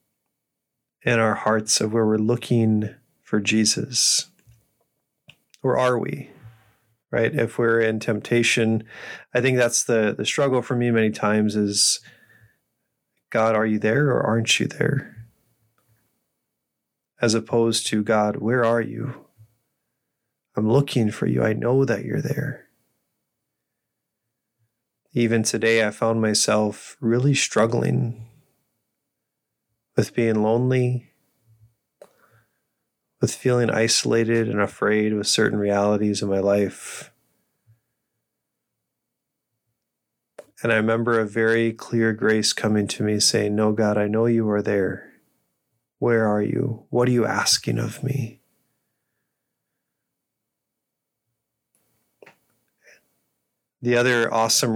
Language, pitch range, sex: English, 110-120 Hz, male